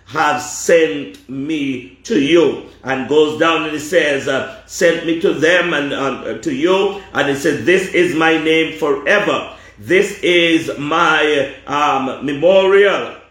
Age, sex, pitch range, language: 50-69, male, 150-180 Hz, English